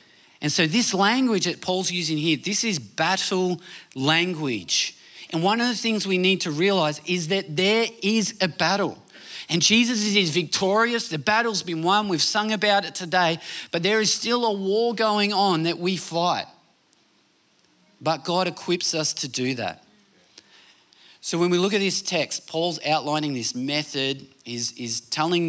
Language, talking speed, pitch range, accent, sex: English, 165 wpm, 120-185 Hz, Australian, male